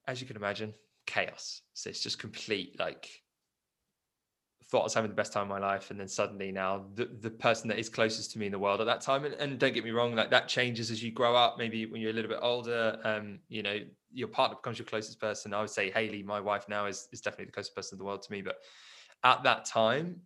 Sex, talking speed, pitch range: male, 265 wpm, 110-135 Hz